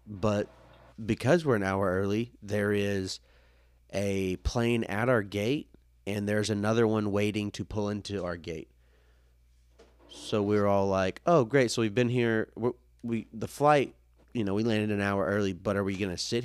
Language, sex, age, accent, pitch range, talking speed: English, male, 30-49, American, 65-105 Hz, 185 wpm